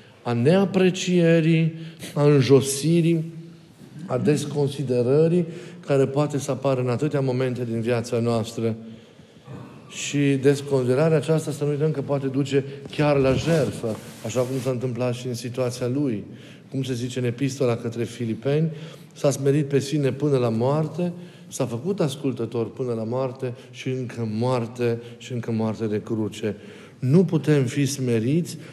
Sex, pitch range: male, 120-150 Hz